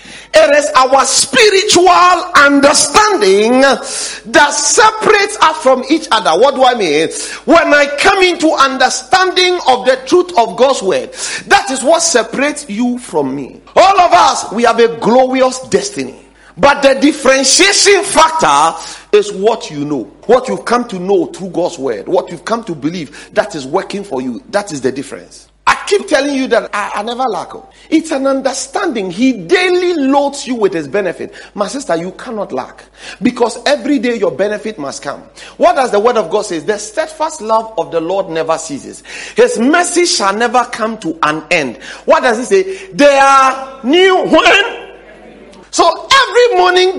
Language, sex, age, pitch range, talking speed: English, male, 50-69, 230-355 Hz, 170 wpm